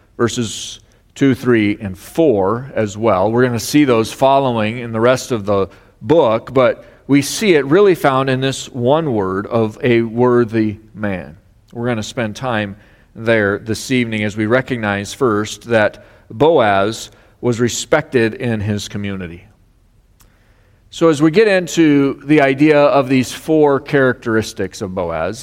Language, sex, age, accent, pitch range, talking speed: English, male, 40-59, American, 110-150 Hz, 155 wpm